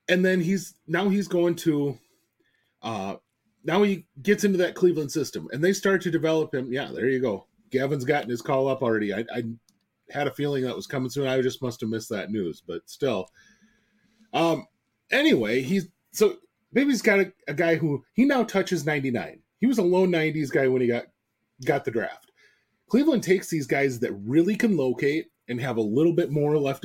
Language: English